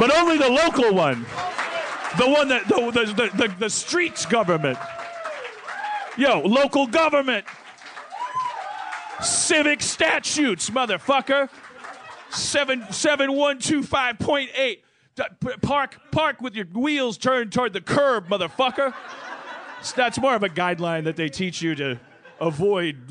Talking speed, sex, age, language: 110 wpm, male, 40-59, English